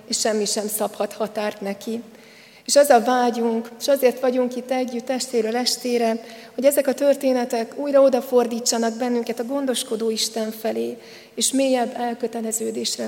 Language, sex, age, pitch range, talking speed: Hungarian, female, 40-59, 220-255 Hz, 140 wpm